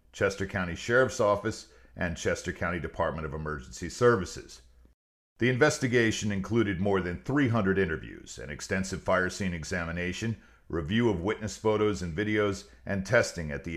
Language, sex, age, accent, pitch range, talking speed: English, male, 50-69, American, 85-105 Hz, 145 wpm